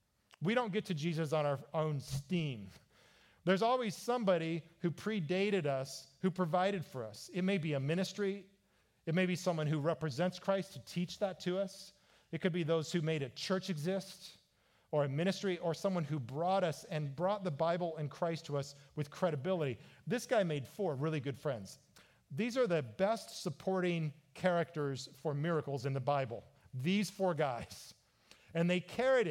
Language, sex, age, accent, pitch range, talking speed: English, male, 40-59, American, 150-195 Hz, 180 wpm